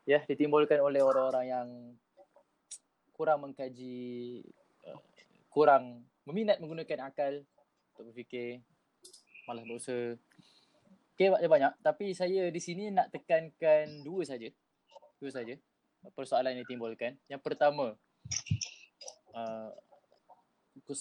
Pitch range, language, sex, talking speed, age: 120-170 Hz, Malay, male, 100 wpm, 20-39